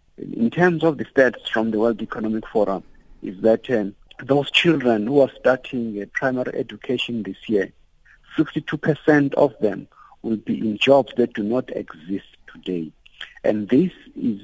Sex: male